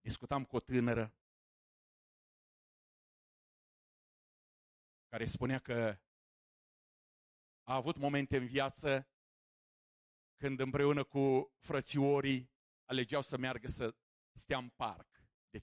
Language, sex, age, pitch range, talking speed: English, male, 50-69, 105-140 Hz, 90 wpm